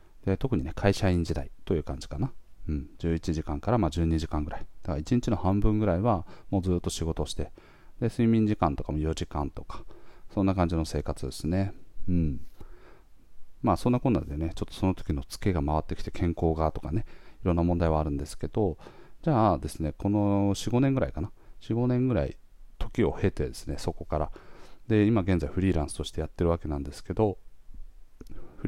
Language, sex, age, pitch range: Japanese, male, 40-59, 80-100 Hz